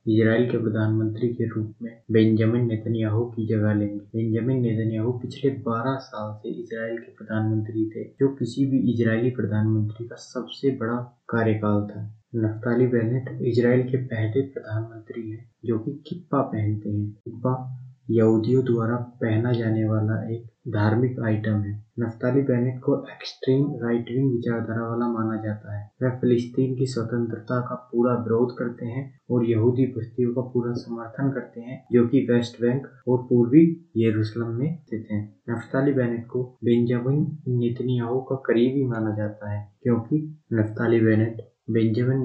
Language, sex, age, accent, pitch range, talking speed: Hindi, male, 20-39, native, 110-125 Hz, 145 wpm